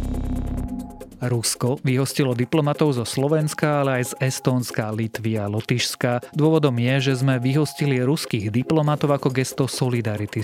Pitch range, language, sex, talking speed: 115-135 Hz, Slovak, male, 125 wpm